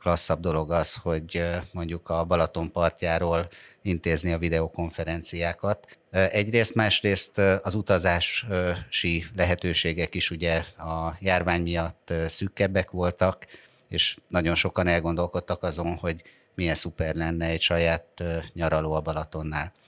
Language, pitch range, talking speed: Hungarian, 80-90 Hz, 110 wpm